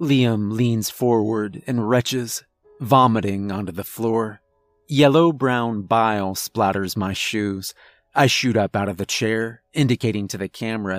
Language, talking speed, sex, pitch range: English, 140 wpm, male, 110-135 Hz